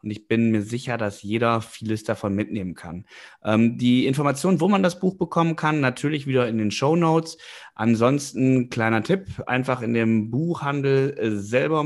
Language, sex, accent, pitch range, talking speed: German, male, German, 105-135 Hz, 160 wpm